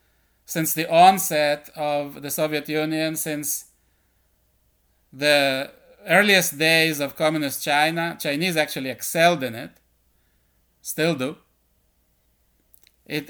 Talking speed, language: 100 wpm, English